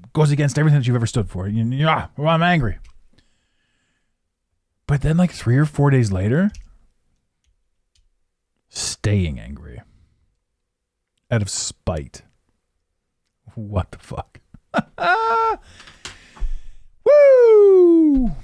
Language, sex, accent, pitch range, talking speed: English, male, American, 100-145 Hz, 100 wpm